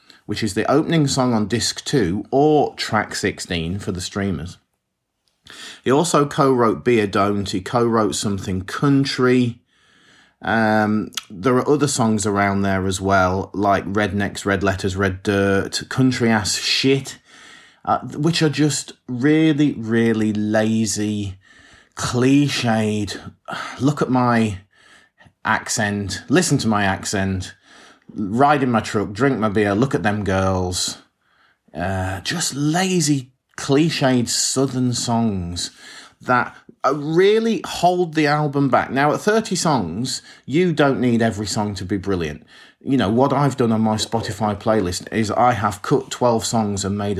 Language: English